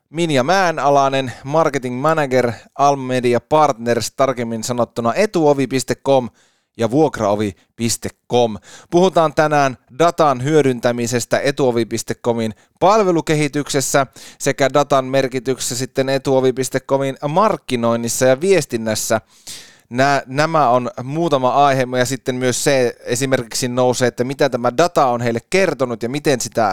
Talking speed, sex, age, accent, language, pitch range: 100 wpm, male, 20-39, native, Finnish, 120-155 Hz